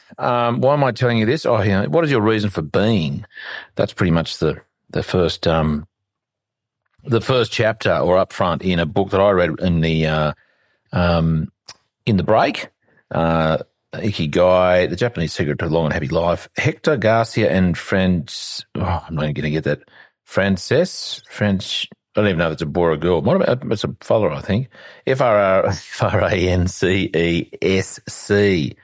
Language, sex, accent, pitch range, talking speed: English, male, Australian, 85-105 Hz, 170 wpm